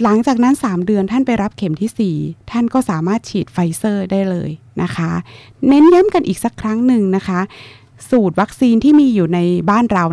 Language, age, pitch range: Thai, 20-39, 175-235 Hz